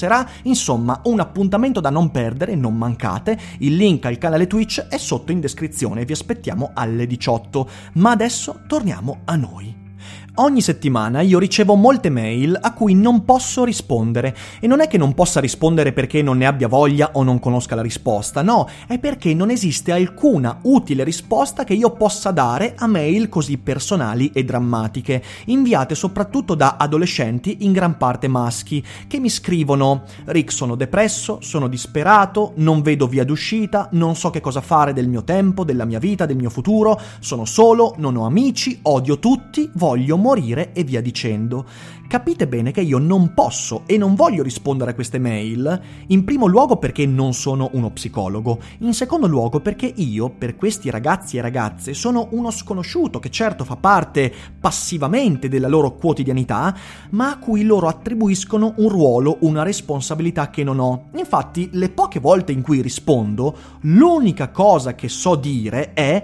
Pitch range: 130-205 Hz